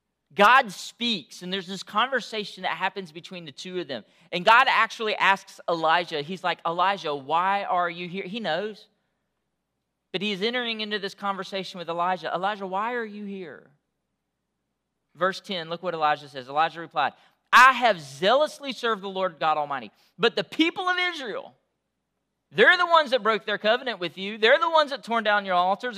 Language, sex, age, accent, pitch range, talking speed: English, male, 40-59, American, 180-250 Hz, 180 wpm